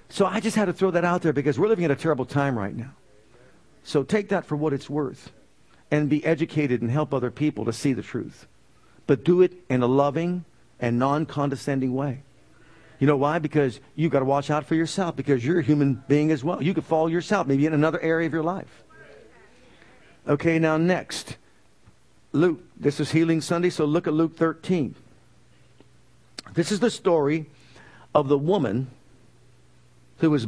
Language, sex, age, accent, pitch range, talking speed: English, male, 50-69, American, 140-170 Hz, 190 wpm